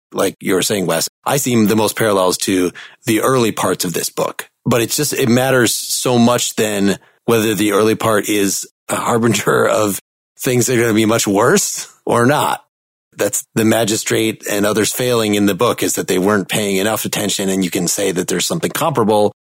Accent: American